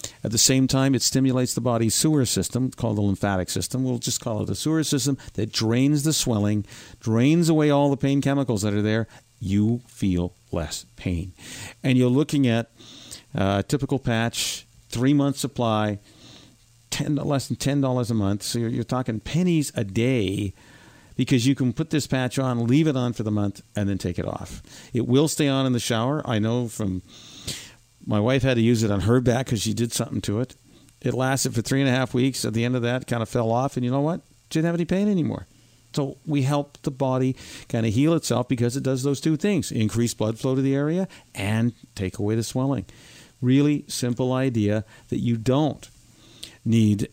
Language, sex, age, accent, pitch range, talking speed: English, male, 50-69, American, 110-135 Hz, 210 wpm